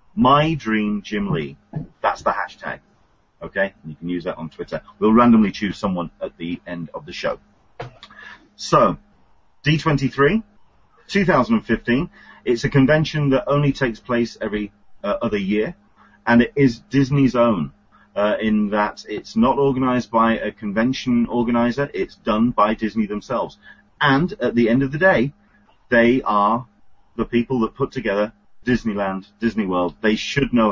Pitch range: 100-135 Hz